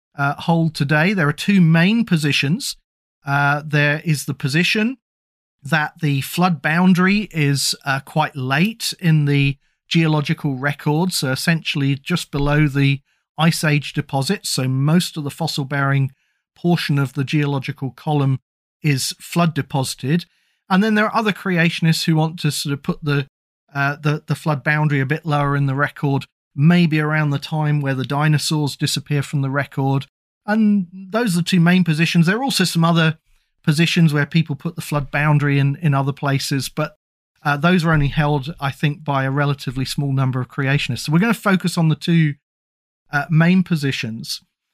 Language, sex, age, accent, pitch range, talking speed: English, male, 40-59, British, 140-175 Hz, 175 wpm